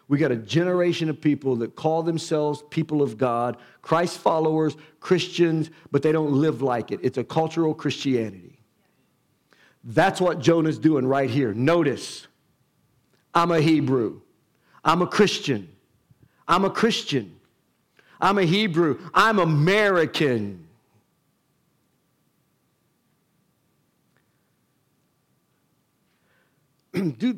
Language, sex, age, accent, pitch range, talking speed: English, male, 50-69, American, 125-170 Hz, 105 wpm